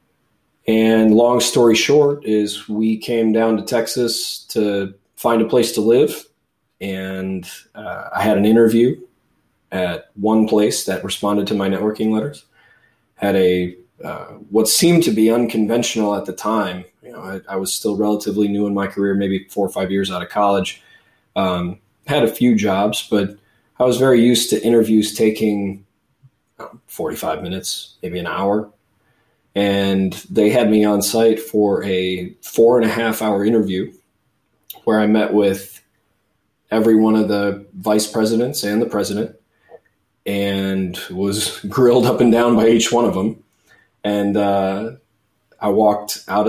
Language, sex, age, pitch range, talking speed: English, male, 20-39, 100-115 Hz, 155 wpm